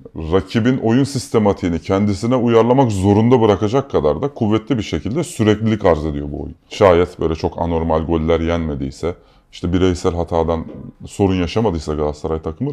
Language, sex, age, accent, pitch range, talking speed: Turkish, male, 30-49, native, 85-120 Hz, 140 wpm